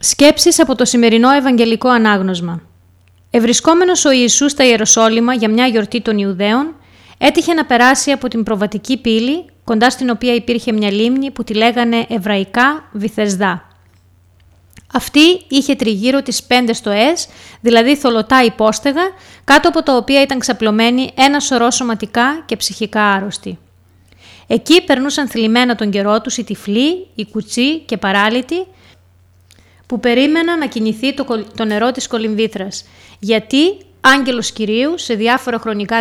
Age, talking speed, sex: 20-39, 135 wpm, female